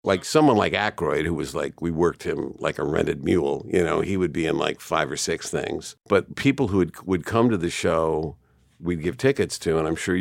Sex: male